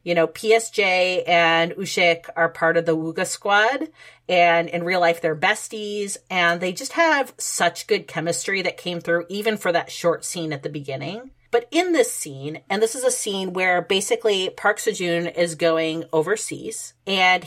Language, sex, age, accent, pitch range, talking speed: English, female, 30-49, American, 160-210 Hz, 180 wpm